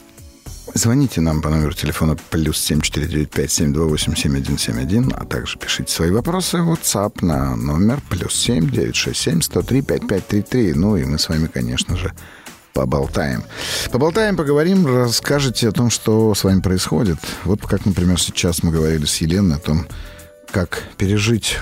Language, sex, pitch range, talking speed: Russian, male, 80-110 Hz, 135 wpm